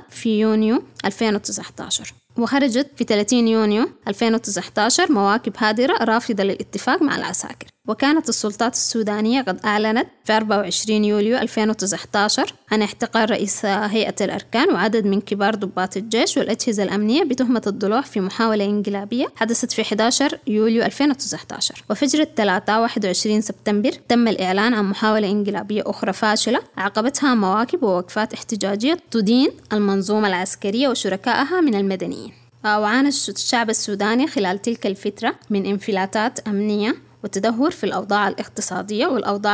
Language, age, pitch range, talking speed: English, 20-39, 200-235 Hz, 120 wpm